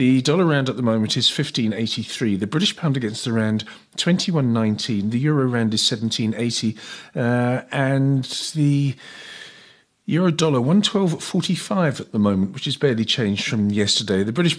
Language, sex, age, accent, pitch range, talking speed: English, male, 40-59, British, 115-160 Hz, 150 wpm